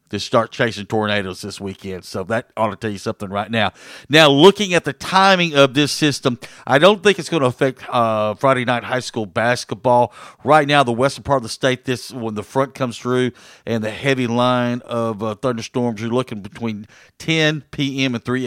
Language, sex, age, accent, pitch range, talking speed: English, male, 50-69, American, 110-135 Hz, 210 wpm